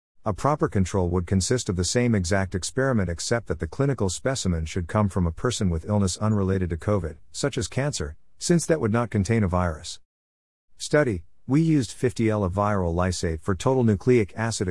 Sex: male